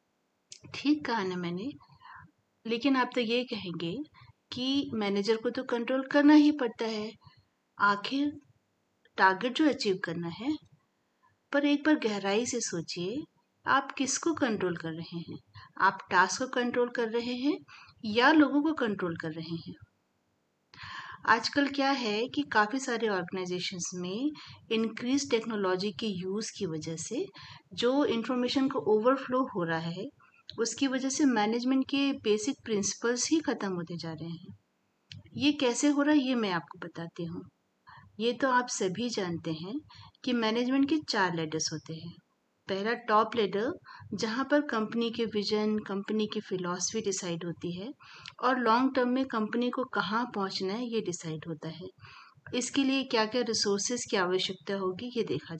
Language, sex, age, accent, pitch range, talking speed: Hindi, female, 50-69, native, 185-260 Hz, 160 wpm